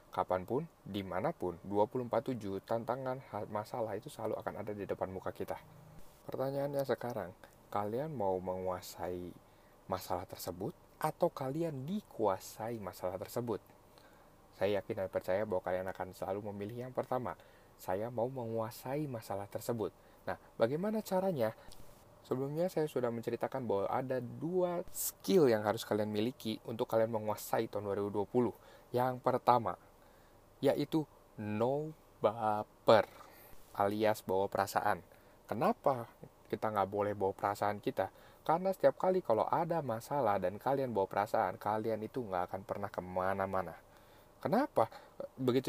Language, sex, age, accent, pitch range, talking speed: Indonesian, male, 20-39, native, 100-150 Hz, 125 wpm